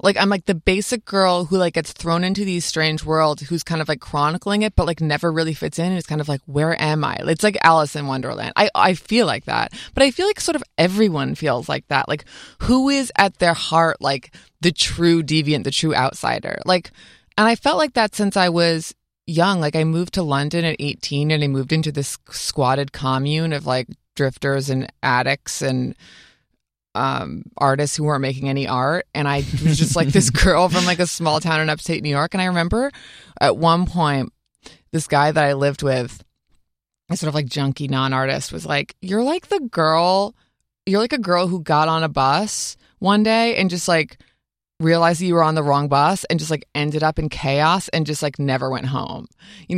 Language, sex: English, female